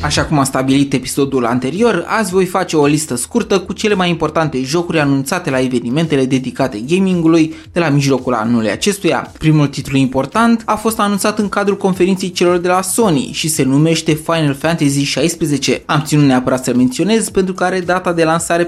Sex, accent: male, native